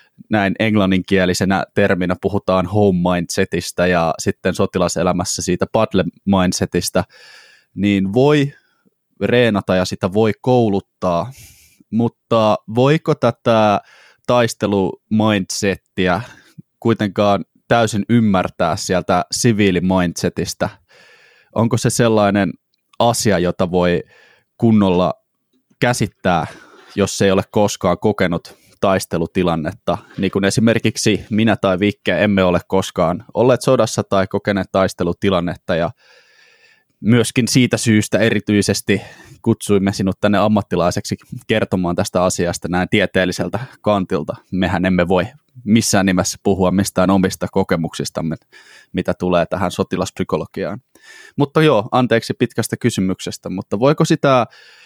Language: Finnish